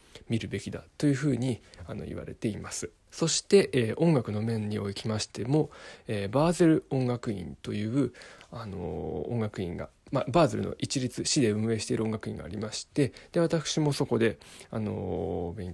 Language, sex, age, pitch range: Japanese, male, 20-39, 105-135 Hz